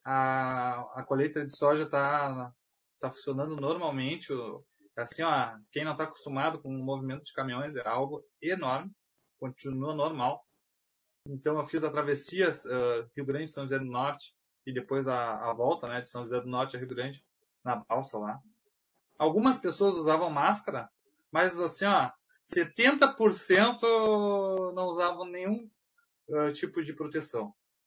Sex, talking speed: male, 150 wpm